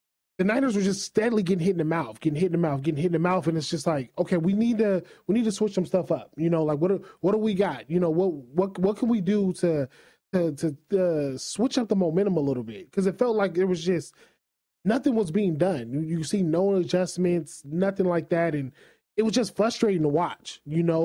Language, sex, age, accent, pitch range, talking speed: English, male, 20-39, American, 160-205 Hz, 260 wpm